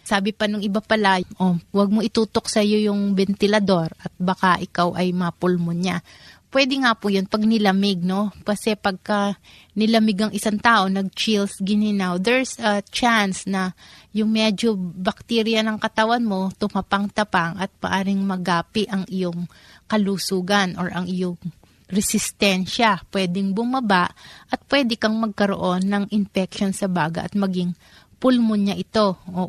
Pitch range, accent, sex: 185-215 Hz, native, female